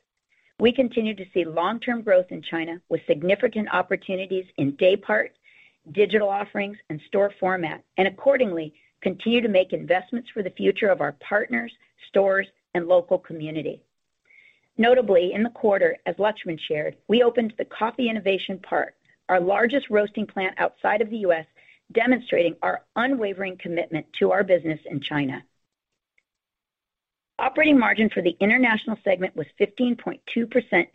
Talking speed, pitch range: 140 wpm, 175-230 Hz